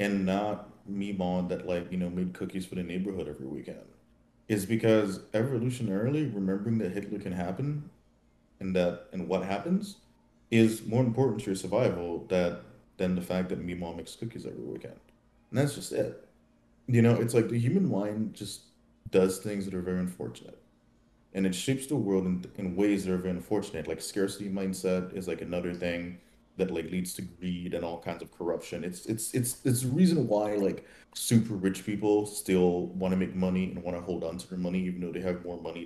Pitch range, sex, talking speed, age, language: 90-110 Hz, male, 205 wpm, 30-49, English